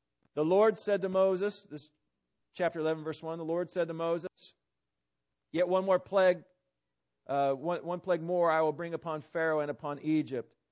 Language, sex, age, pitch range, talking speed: English, male, 40-59, 140-185 Hz, 180 wpm